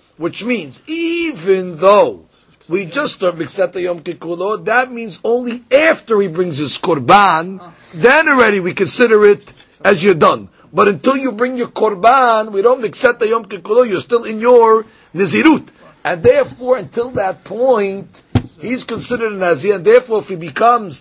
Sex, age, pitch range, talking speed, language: male, 50-69, 175-245 Hz, 165 wpm, English